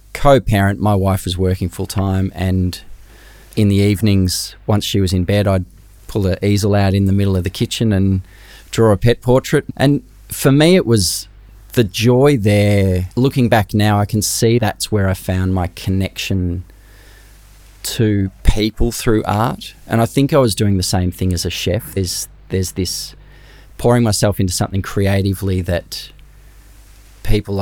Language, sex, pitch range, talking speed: English, male, 90-105 Hz, 165 wpm